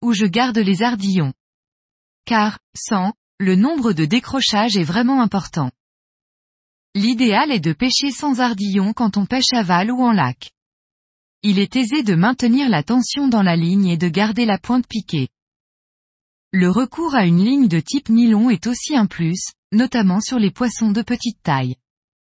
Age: 20-39